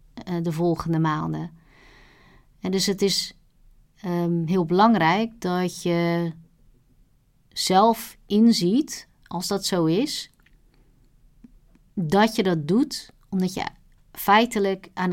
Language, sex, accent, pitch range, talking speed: Dutch, female, Dutch, 170-210 Hz, 100 wpm